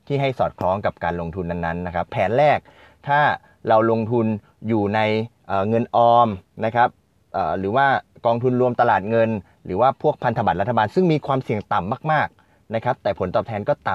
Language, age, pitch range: Thai, 20-39, 100-120 Hz